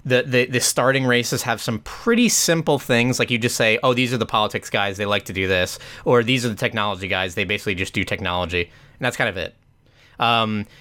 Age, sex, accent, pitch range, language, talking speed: 20-39, male, American, 105-125 Hz, English, 235 wpm